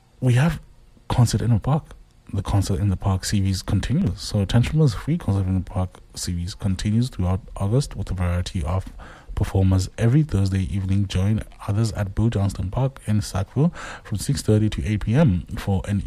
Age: 20-39